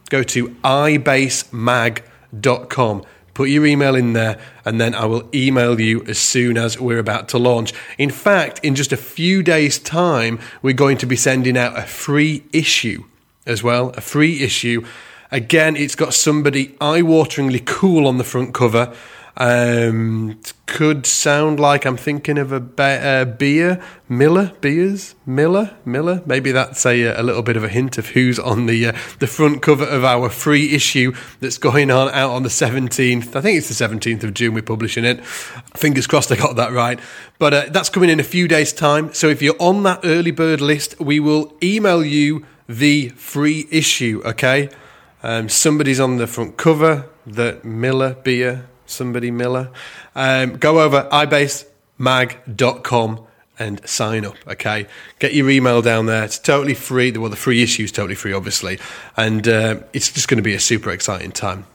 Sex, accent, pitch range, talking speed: male, British, 120-150 Hz, 180 wpm